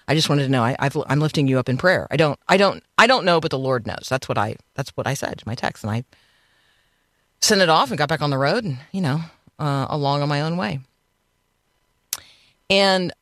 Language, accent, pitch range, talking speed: English, American, 140-190 Hz, 250 wpm